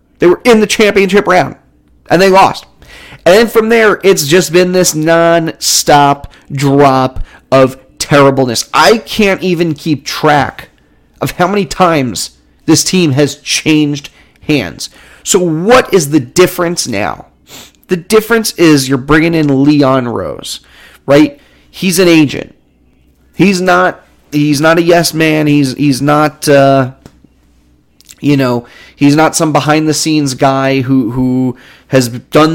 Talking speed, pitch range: 140 wpm, 130-170 Hz